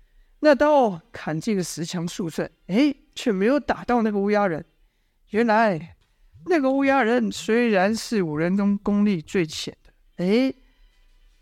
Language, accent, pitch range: Chinese, native, 185-245 Hz